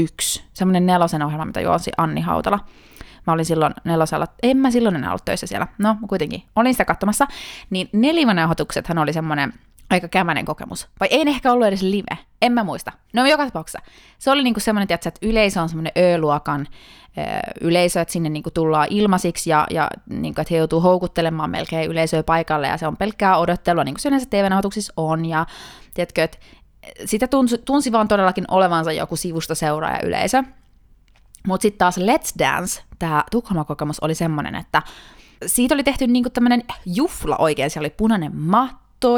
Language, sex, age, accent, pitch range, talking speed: Finnish, female, 20-39, native, 160-225 Hz, 175 wpm